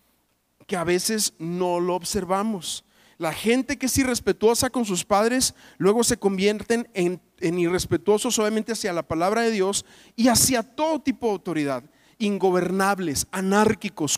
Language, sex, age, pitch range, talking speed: Spanish, male, 40-59, 175-225 Hz, 145 wpm